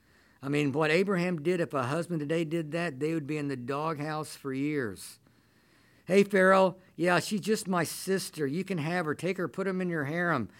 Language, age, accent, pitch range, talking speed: English, 50-69, American, 115-160 Hz, 210 wpm